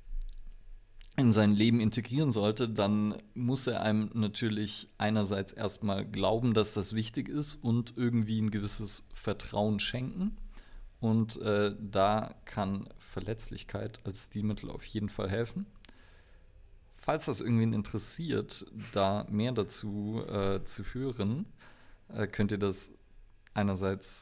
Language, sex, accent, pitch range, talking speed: German, male, German, 100-115 Hz, 120 wpm